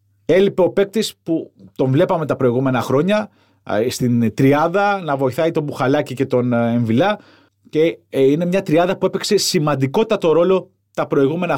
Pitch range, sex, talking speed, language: 120-175 Hz, male, 145 wpm, Greek